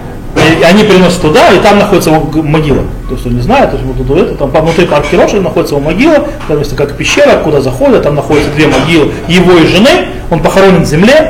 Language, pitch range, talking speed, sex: Russian, 140-230 Hz, 220 wpm, male